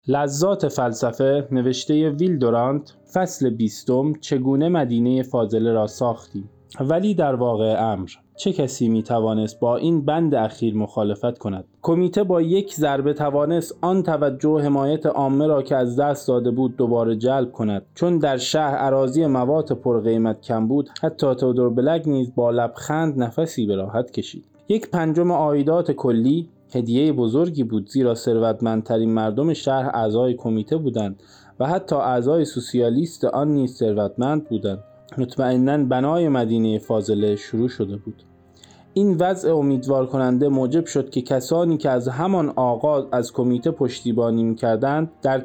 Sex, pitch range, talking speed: male, 115-150 Hz, 145 wpm